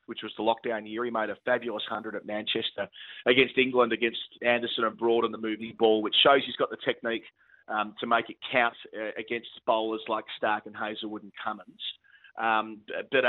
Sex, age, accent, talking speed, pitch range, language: male, 30-49, Australian, 200 wpm, 110-120 Hz, English